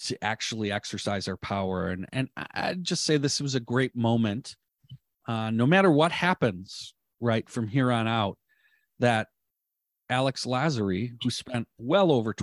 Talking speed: 155 wpm